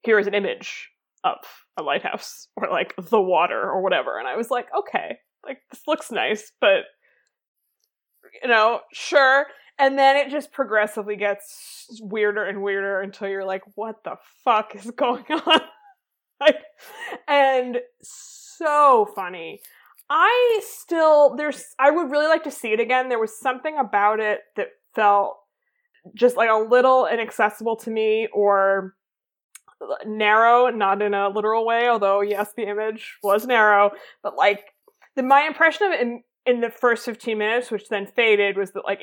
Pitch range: 210-275 Hz